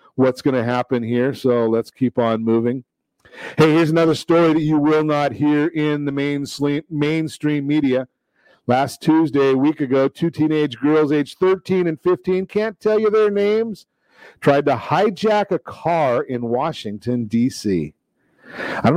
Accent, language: American, English